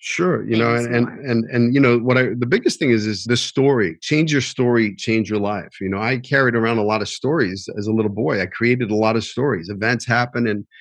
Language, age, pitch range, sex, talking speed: English, 40-59, 105-120 Hz, male, 250 wpm